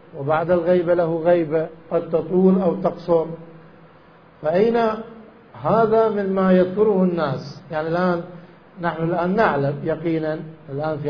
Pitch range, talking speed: 160-200 Hz, 115 wpm